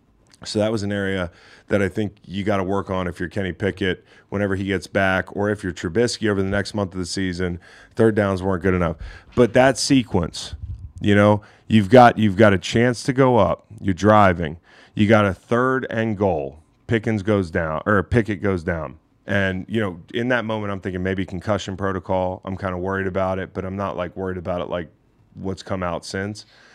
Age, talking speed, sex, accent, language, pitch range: 30-49, 215 wpm, male, American, English, 95-110 Hz